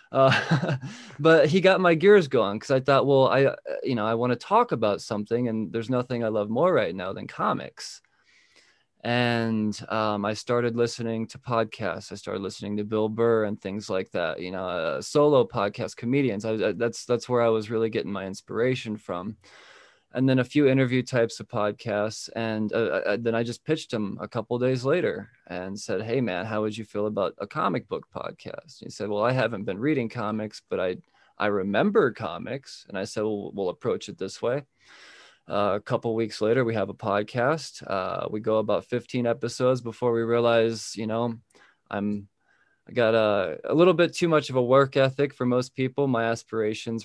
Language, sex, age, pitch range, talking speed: English, male, 20-39, 110-125 Hz, 205 wpm